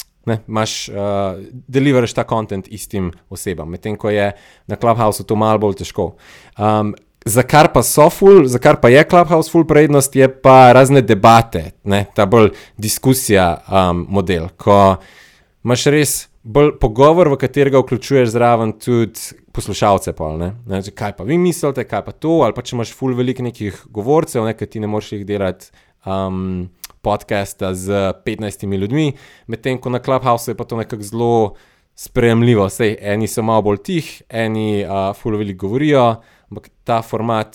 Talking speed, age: 160 wpm, 20-39